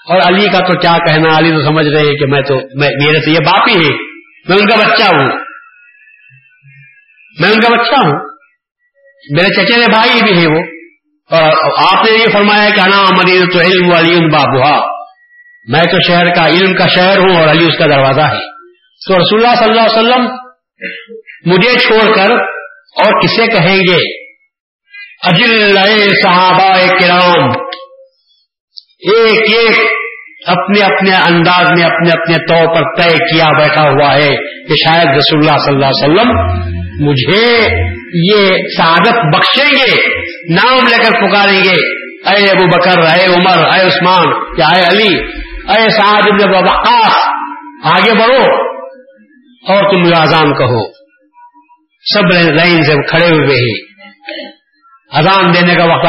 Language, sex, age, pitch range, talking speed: Urdu, male, 50-69, 165-250 Hz, 155 wpm